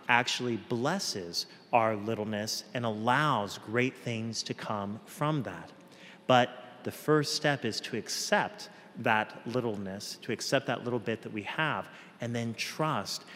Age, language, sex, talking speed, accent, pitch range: 30-49, English, male, 145 wpm, American, 110-135 Hz